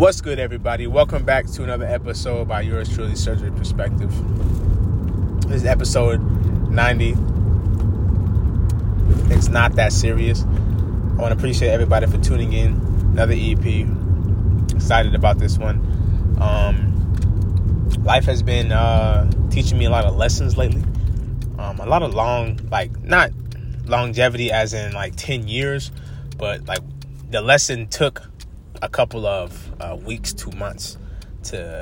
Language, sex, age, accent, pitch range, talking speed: English, male, 20-39, American, 90-110 Hz, 140 wpm